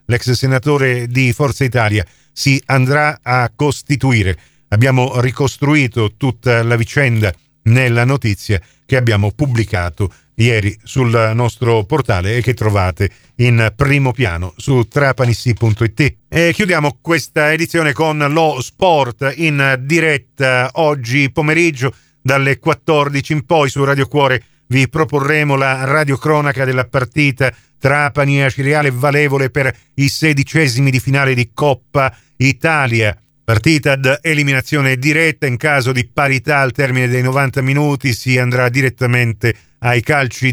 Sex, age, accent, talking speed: male, 40-59, native, 125 wpm